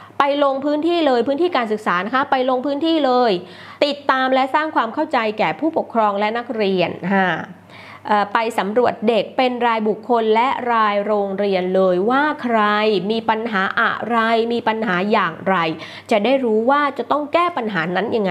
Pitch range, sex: 195-260 Hz, female